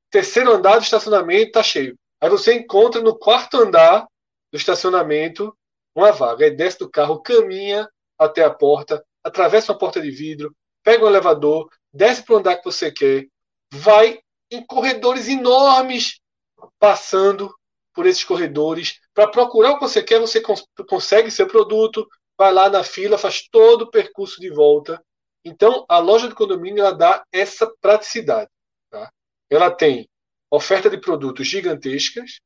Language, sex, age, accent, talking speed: Portuguese, male, 20-39, Brazilian, 155 wpm